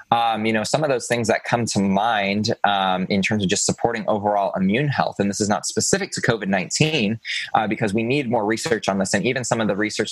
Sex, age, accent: male, 20-39, American